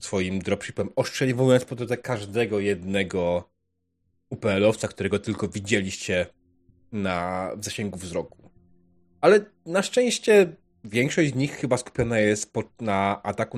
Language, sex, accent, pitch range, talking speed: Polish, male, native, 95-145 Hz, 110 wpm